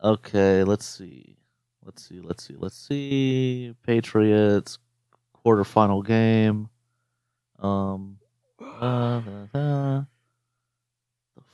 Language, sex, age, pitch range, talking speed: English, male, 30-49, 110-140 Hz, 90 wpm